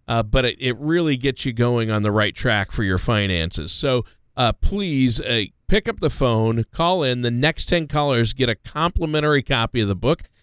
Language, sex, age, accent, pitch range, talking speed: English, male, 40-59, American, 115-155 Hz, 205 wpm